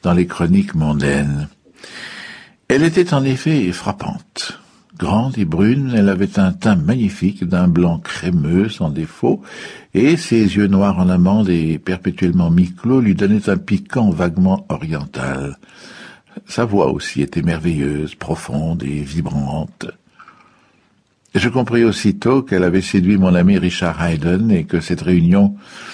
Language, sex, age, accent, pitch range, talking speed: French, male, 60-79, French, 80-105 Hz, 135 wpm